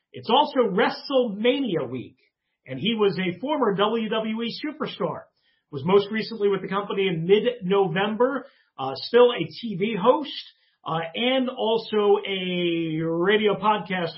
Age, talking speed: 40-59, 125 wpm